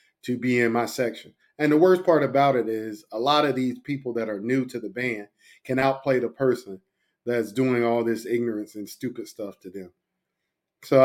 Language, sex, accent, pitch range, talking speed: English, male, American, 115-135 Hz, 205 wpm